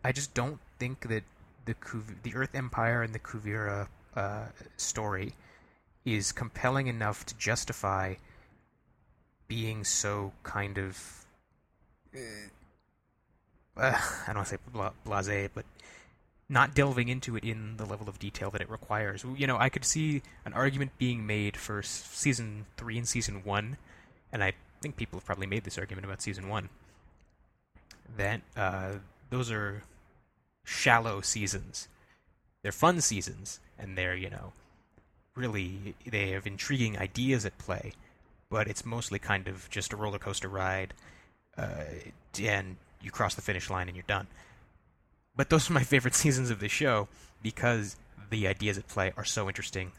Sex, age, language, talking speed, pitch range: male, 20-39, English, 155 wpm, 95-115 Hz